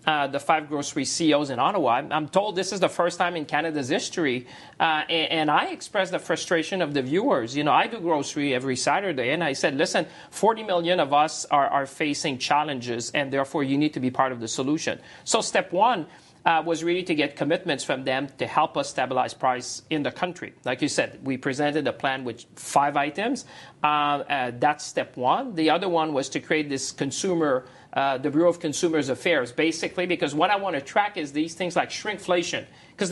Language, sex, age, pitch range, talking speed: English, male, 40-59, 135-170 Hz, 215 wpm